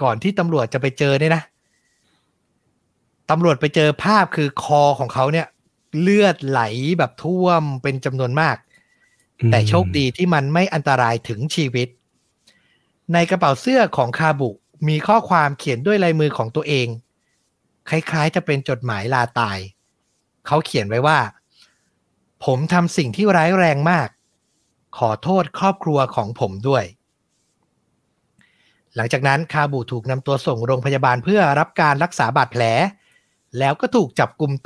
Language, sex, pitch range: Thai, male, 125-165 Hz